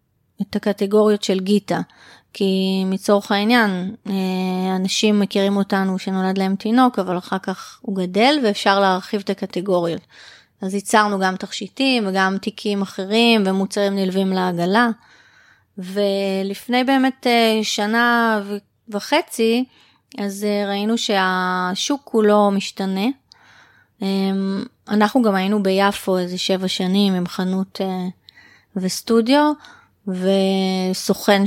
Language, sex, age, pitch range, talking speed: Hebrew, female, 20-39, 190-220 Hz, 100 wpm